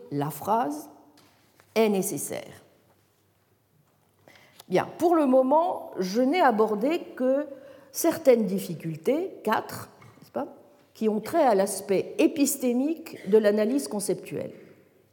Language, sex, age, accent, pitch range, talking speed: French, female, 50-69, French, 180-270 Hz, 105 wpm